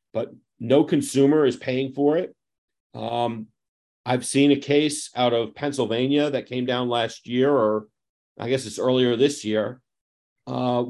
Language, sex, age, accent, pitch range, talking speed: English, male, 40-59, American, 120-140 Hz, 155 wpm